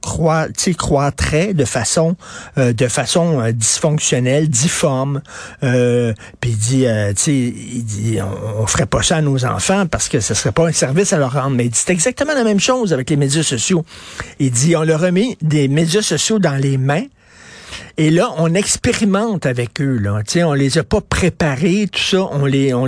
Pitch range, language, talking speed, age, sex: 130-170 Hz, French, 185 wpm, 60-79, male